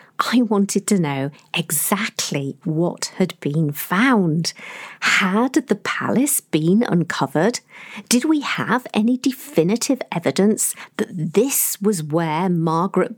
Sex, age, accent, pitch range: female, 50-69, British, 160-220 Hz